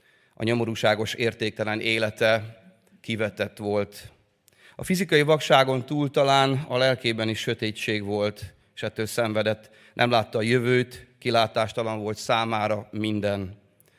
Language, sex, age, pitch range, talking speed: Hungarian, male, 30-49, 105-130 Hz, 115 wpm